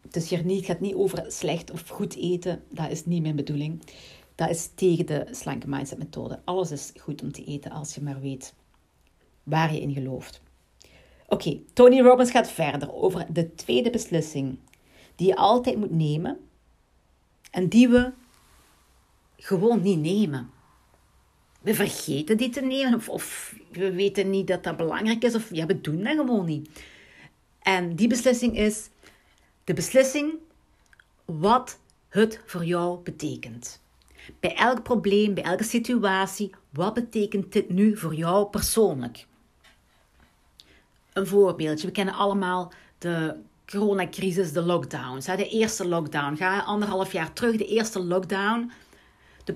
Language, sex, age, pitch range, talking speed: Dutch, female, 40-59, 155-205 Hz, 150 wpm